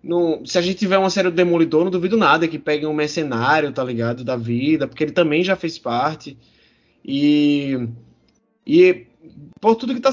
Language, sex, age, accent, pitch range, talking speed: Portuguese, male, 20-39, Brazilian, 155-210 Hz, 190 wpm